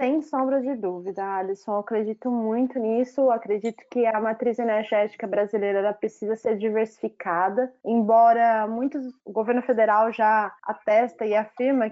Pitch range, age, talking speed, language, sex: 215-255 Hz, 20-39, 145 wpm, Portuguese, female